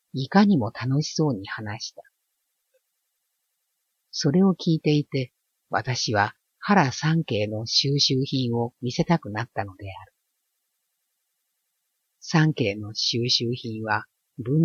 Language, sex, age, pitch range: Japanese, female, 50-69, 110-155 Hz